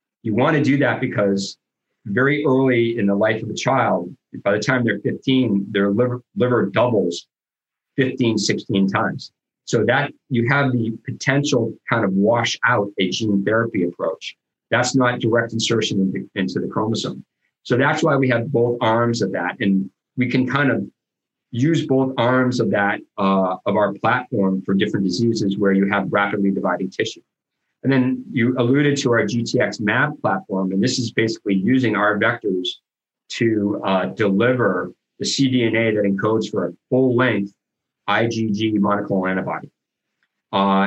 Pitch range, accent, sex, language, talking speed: 100-125 Hz, American, male, English, 165 wpm